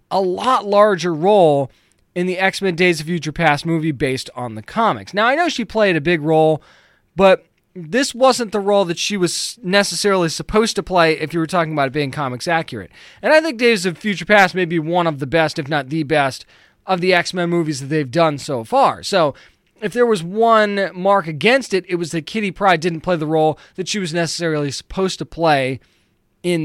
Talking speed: 215 wpm